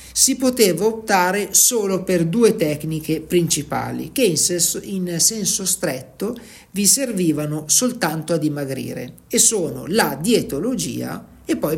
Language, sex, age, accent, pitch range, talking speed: Italian, male, 50-69, native, 145-210 Hz, 120 wpm